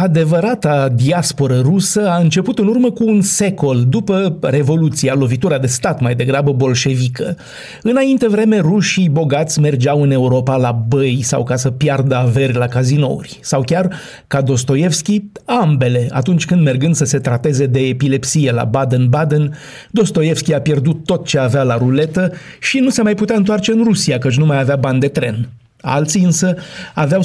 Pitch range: 135-170 Hz